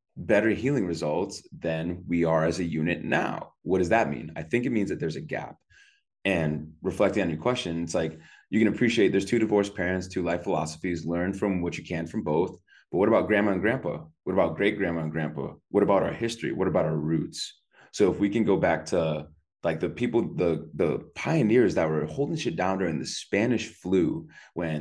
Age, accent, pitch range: 20-39, American, 80-115 Hz